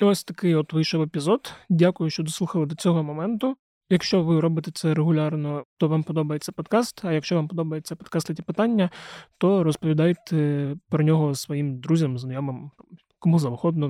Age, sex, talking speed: 20-39, male, 150 wpm